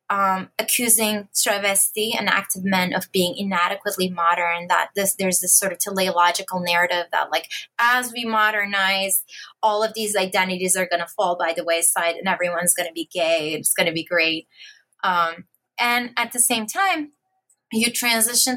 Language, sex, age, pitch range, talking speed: English, female, 20-39, 185-235 Hz, 175 wpm